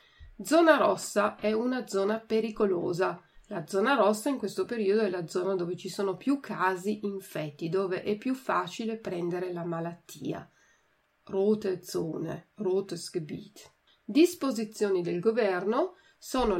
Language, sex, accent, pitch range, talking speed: Italian, female, native, 175-225 Hz, 130 wpm